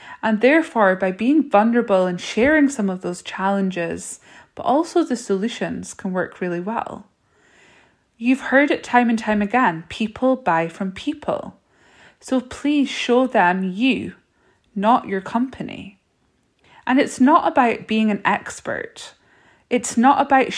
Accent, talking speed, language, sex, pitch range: British, 140 wpm, English, female, 195-260 Hz